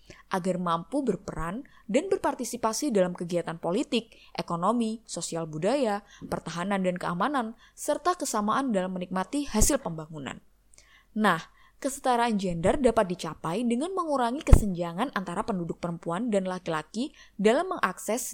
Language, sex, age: Indonesian, female, 20-39